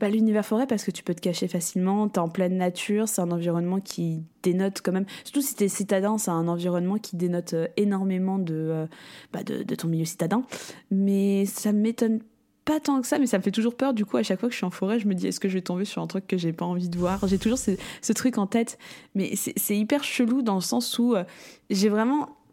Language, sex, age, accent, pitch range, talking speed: French, female, 20-39, French, 185-230 Hz, 260 wpm